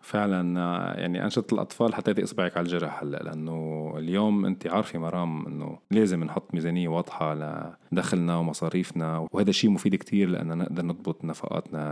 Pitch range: 85-105 Hz